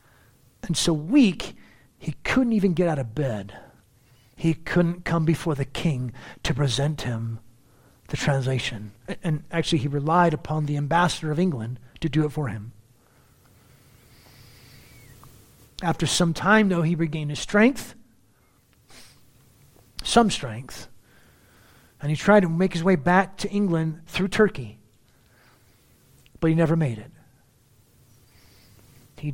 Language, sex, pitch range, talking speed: English, male, 120-170 Hz, 130 wpm